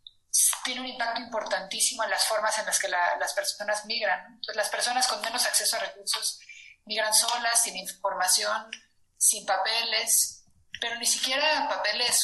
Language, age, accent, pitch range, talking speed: Spanish, 30-49, Mexican, 195-240 Hz, 155 wpm